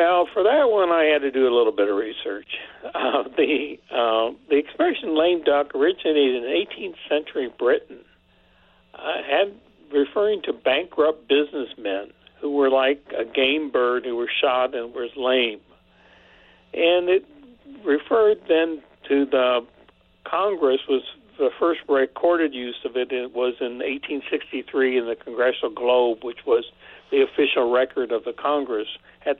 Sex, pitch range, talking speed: male, 130-175 Hz, 150 wpm